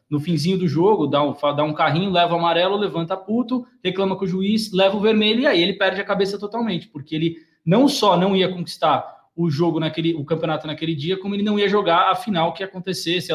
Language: Portuguese